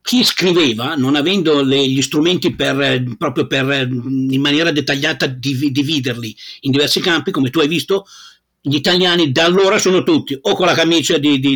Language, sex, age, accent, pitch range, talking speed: Italian, male, 50-69, native, 130-170 Hz, 165 wpm